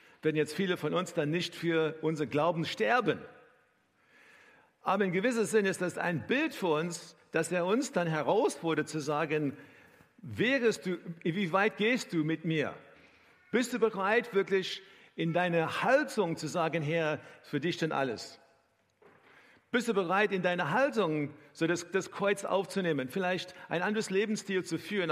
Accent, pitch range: German, 160-210 Hz